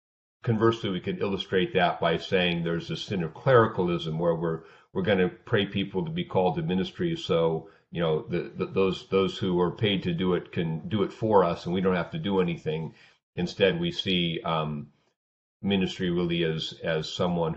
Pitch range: 85-115 Hz